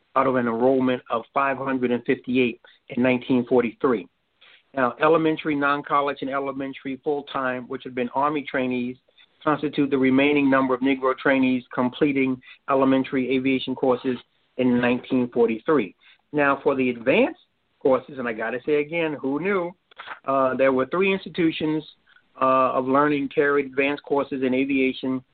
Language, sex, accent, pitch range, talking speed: English, male, American, 130-140 Hz, 135 wpm